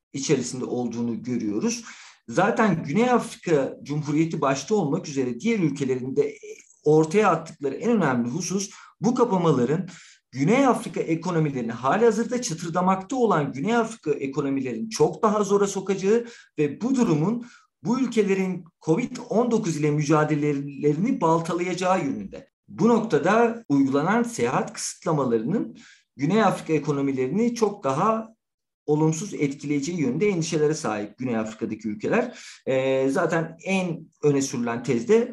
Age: 50-69